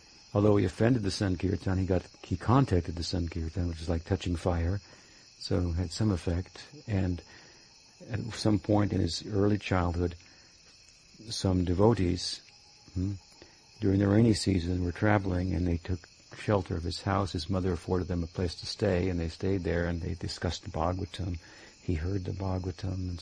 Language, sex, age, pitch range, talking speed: English, male, 60-79, 90-105 Hz, 175 wpm